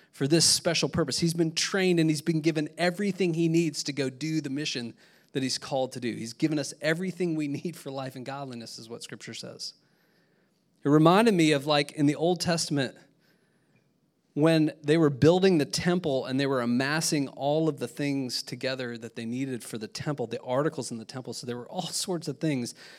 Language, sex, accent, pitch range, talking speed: English, male, American, 130-165 Hz, 210 wpm